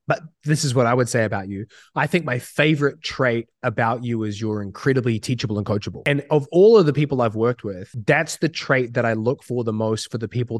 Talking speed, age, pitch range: 245 wpm, 20-39, 120-155 Hz